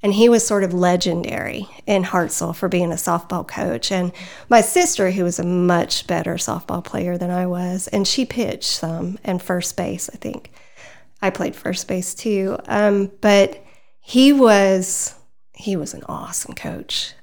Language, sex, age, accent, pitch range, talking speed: English, female, 40-59, American, 180-210 Hz, 170 wpm